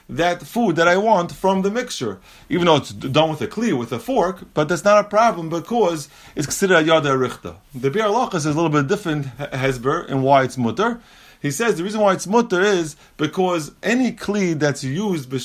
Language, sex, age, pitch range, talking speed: English, male, 30-49, 140-200 Hz, 215 wpm